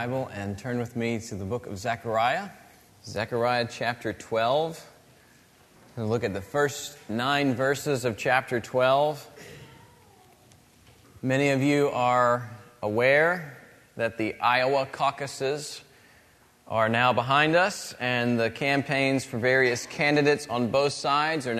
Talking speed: 125 wpm